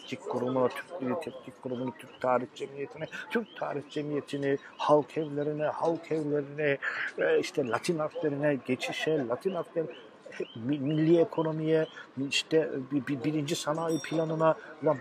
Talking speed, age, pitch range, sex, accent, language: 110 wpm, 50-69, 115-160 Hz, male, native, Turkish